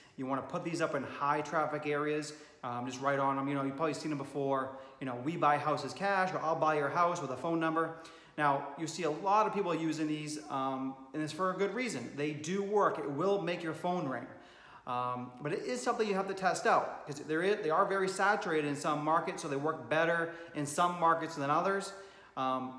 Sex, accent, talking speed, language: male, American, 235 wpm, English